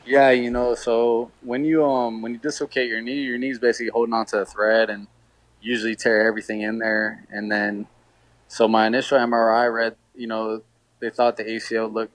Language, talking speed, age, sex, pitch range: English, 200 wpm, 20-39, male, 105-115 Hz